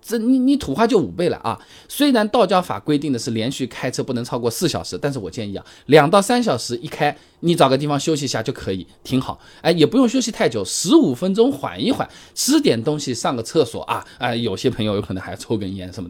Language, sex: Chinese, male